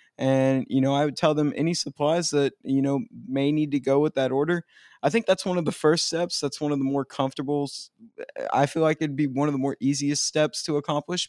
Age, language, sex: 20-39, English, male